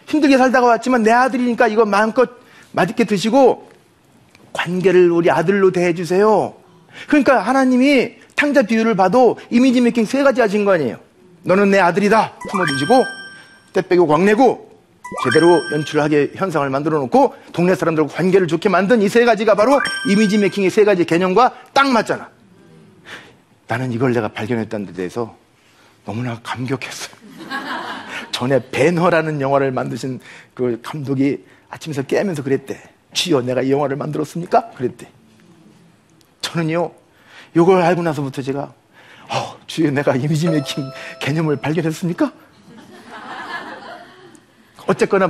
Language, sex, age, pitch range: Korean, male, 40-59, 140-220 Hz